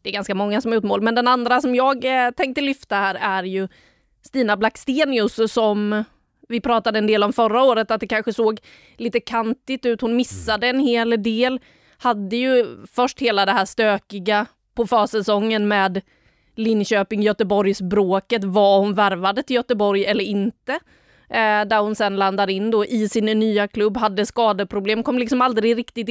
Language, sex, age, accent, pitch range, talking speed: Swedish, female, 30-49, native, 200-235 Hz, 170 wpm